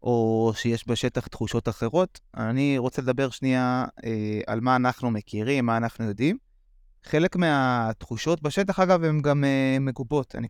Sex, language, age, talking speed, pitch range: male, Hebrew, 20-39, 150 wpm, 110-145 Hz